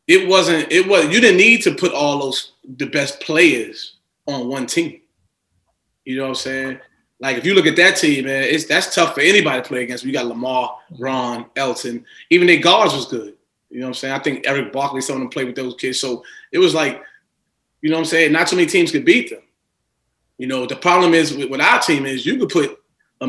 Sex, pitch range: male, 125-180 Hz